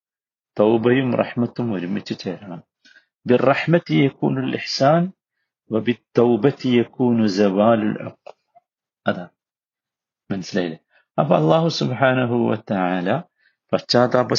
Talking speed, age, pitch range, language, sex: 80 wpm, 50-69, 100-130 Hz, Malayalam, male